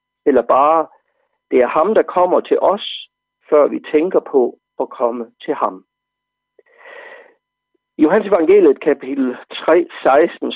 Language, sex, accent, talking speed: Danish, male, native, 125 wpm